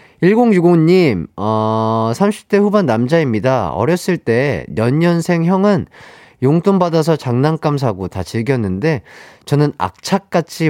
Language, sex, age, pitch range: Korean, male, 30-49, 110-170 Hz